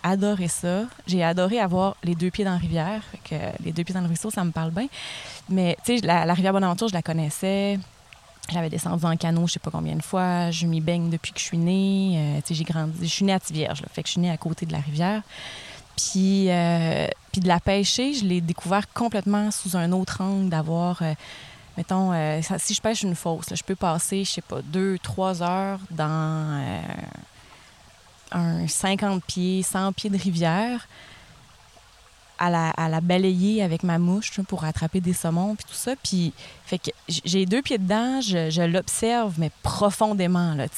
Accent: Canadian